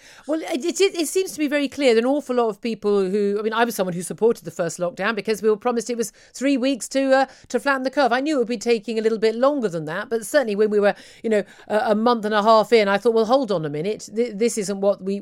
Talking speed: 310 wpm